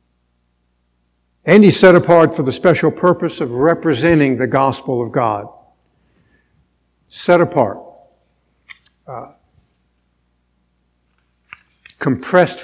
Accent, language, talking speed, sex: American, English, 85 wpm, male